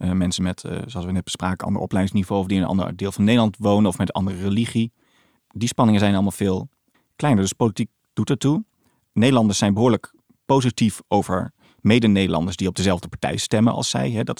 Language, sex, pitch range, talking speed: Dutch, male, 95-120 Hz, 210 wpm